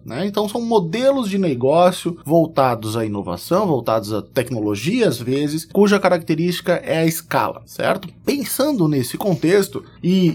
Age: 20-39